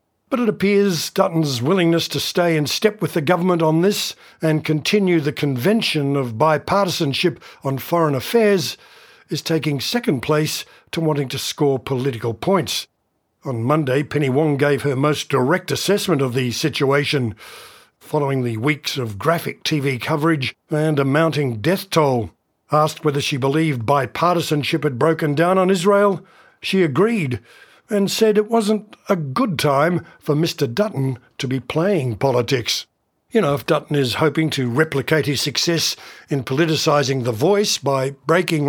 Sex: male